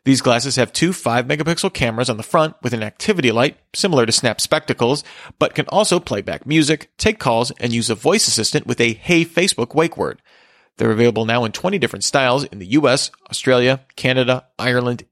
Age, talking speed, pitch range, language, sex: 40-59, 195 wpm, 120-160 Hz, English, male